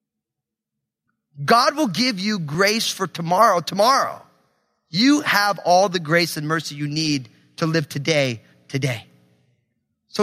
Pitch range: 175-270 Hz